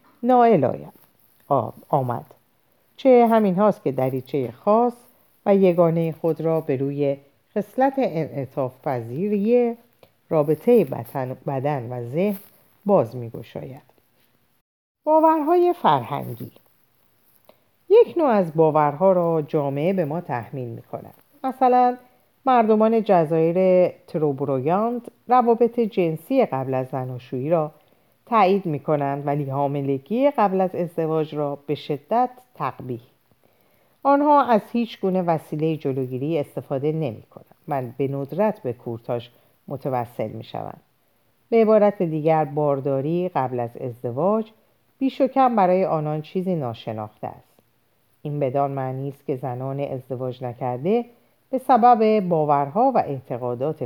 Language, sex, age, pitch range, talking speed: Persian, female, 50-69, 135-220 Hz, 110 wpm